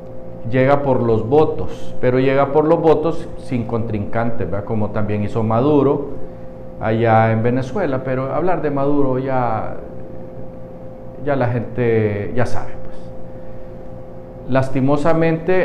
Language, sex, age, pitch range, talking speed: Spanish, male, 50-69, 115-140 Hz, 120 wpm